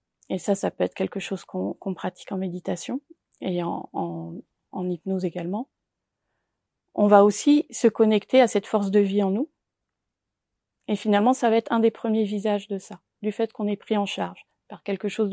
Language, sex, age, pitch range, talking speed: French, female, 30-49, 190-225 Hz, 200 wpm